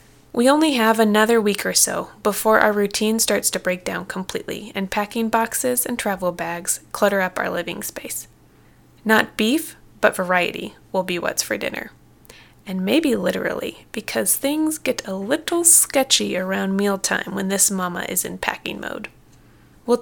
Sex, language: female, English